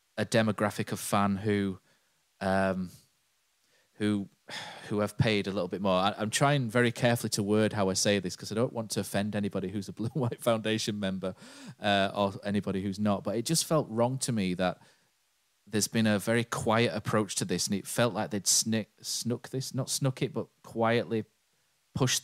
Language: English